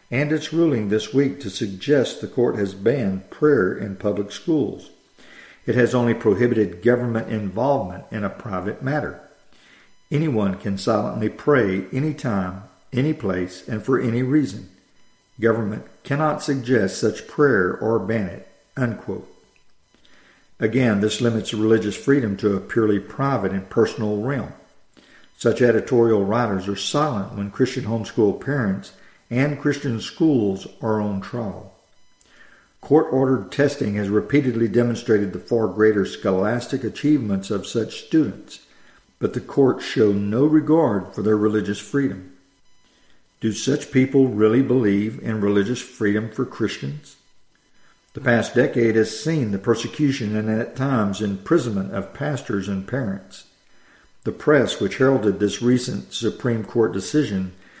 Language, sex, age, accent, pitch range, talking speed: English, male, 50-69, American, 100-130 Hz, 135 wpm